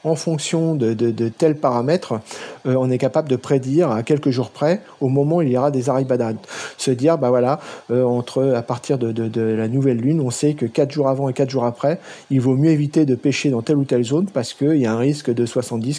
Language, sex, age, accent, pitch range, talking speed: French, male, 40-59, French, 125-155 Hz, 255 wpm